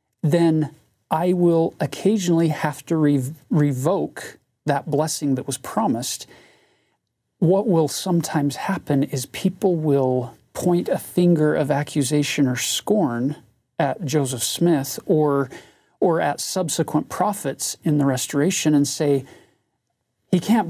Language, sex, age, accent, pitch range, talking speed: English, male, 40-59, American, 140-195 Hz, 120 wpm